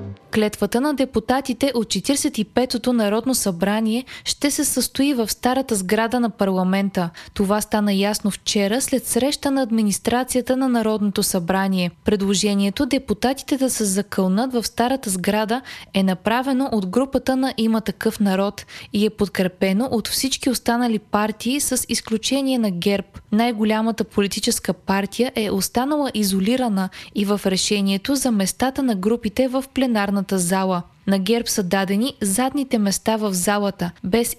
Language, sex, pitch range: Bulgarian, female, 200-255 Hz